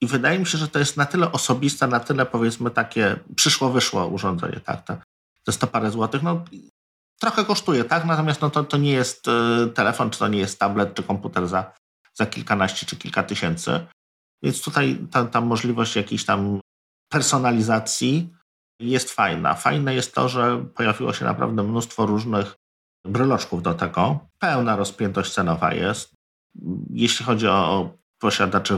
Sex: male